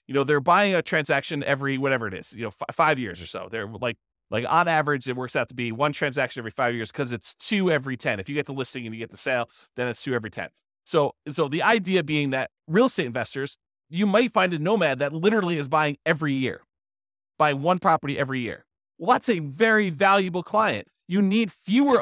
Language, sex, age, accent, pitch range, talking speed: English, male, 30-49, American, 140-185 Hz, 235 wpm